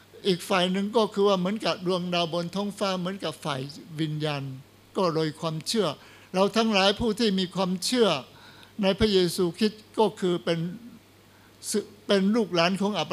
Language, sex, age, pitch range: Thai, male, 60-79, 165-215 Hz